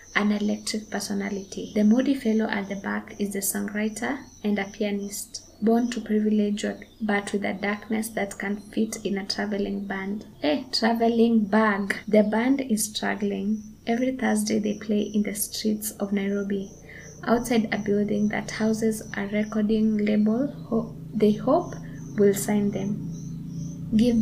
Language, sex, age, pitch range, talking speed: English, female, 20-39, 205-225 Hz, 150 wpm